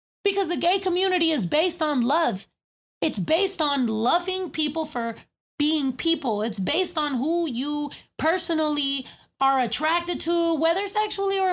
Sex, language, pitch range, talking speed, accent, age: female, English, 250-335 Hz, 145 wpm, American, 20-39